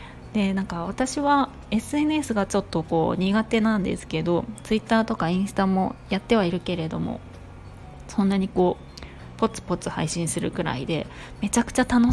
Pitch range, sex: 160-215 Hz, female